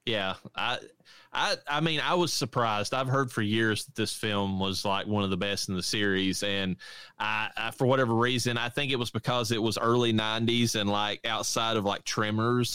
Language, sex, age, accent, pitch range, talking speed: English, male, 30-49, American, 95-120 Hz, 210 wpm